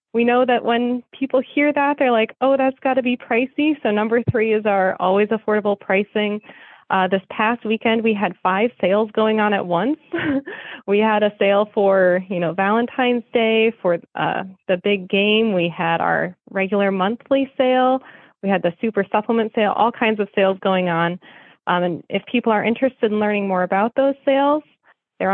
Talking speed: 190 wpm